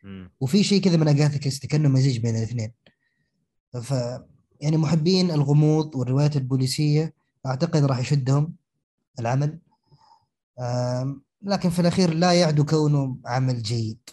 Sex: male